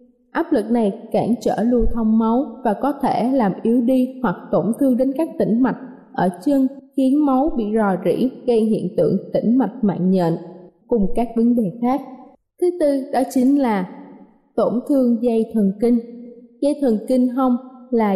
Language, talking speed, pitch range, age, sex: Vietnamese, 180 wpm, 220-260 Hz, 20-39, female